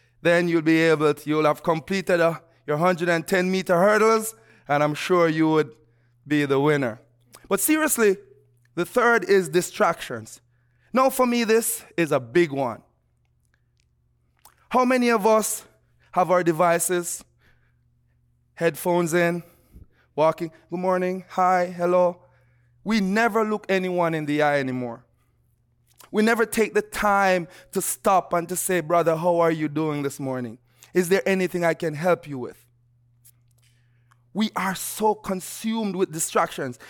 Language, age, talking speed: English, 20-39, 145 wpm